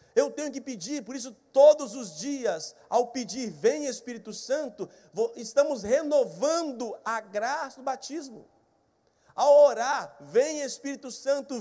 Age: 50-69